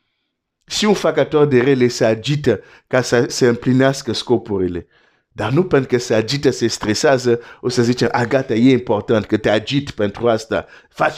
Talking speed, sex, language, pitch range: 95 wpm, male, Romanian, 115-145 Hz